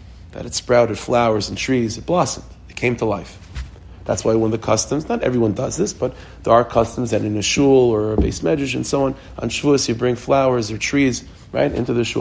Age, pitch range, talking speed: 40-59, 95-120 Hz, 235 wpm